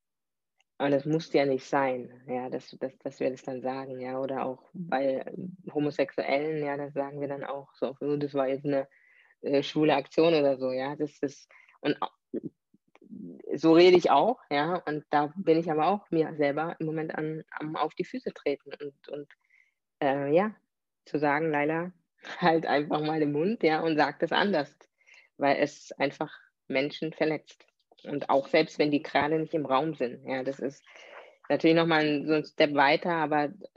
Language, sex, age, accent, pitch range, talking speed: German, female, 20-39, German, 140-160 Hz, 180 wpm